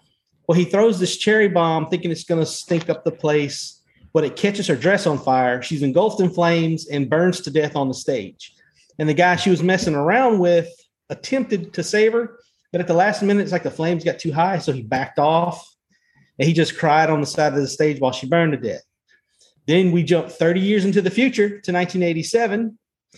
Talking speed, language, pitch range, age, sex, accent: 220 wpm, English, 150-190 Hz, 30-49, male, American